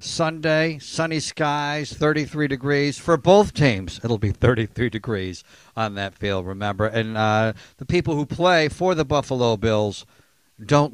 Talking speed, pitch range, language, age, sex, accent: 150 wpm, 140-195 Hz, English, 50-69, male, American